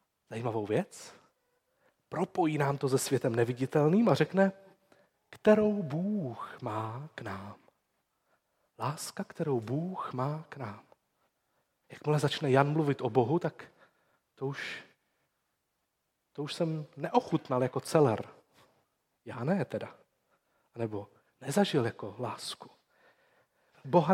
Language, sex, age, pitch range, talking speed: Czech, male, 30-49, 130-185 Hz, 110 wpm